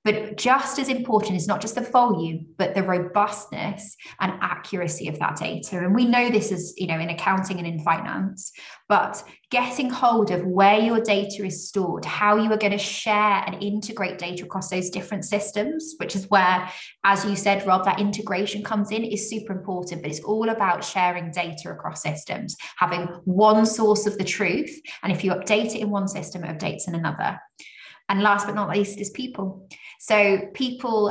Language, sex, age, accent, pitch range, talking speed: English, female, 20-39, British, 185-215 Hz, 195 wpm